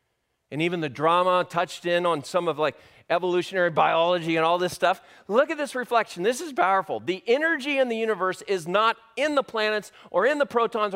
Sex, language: male, English